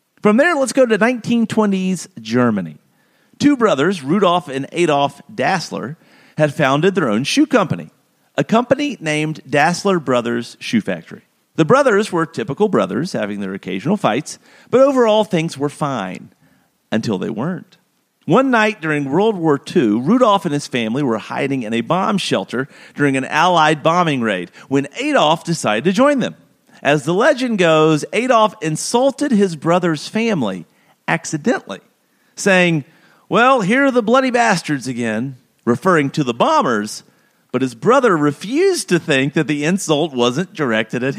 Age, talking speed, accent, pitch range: 40-59, 150 wpm, American, 150-220 Hz